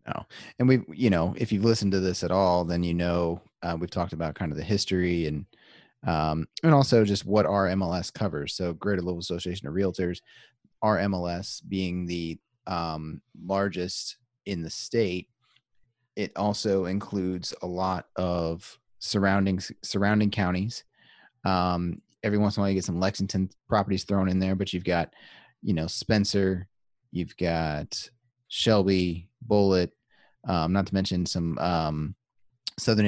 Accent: American